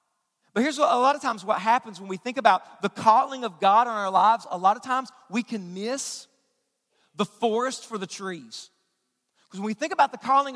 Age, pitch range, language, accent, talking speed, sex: 40-59, 230-300 Hz, English, American, 220 wpm, male